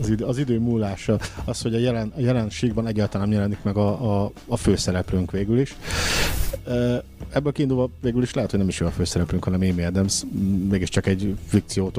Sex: male